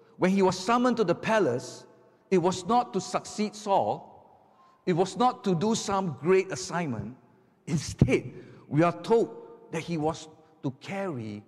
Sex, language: male, English